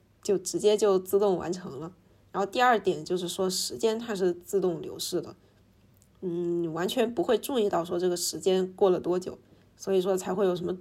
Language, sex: Chinese, female